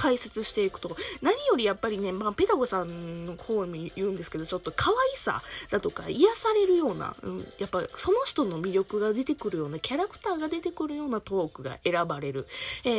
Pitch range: 185-270 Hz